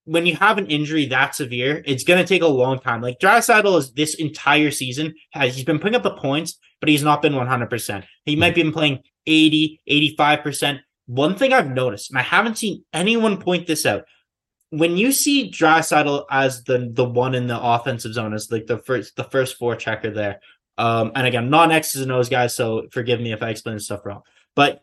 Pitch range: 125-170 Hz